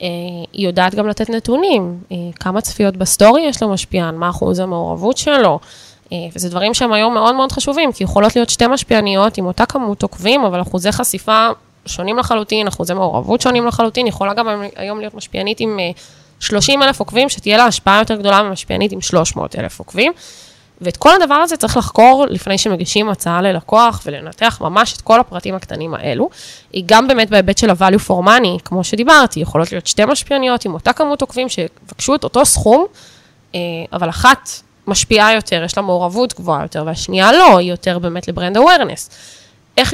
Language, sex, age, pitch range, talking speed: Hebrew, female, 10-29, 180-230 Hz, 165 wpm